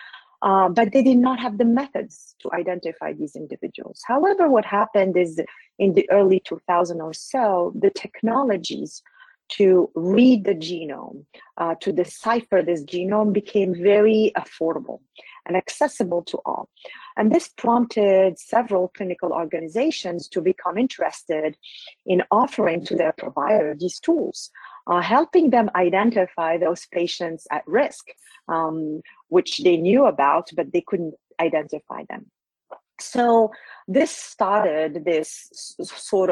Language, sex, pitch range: English, female, 170-230 Hz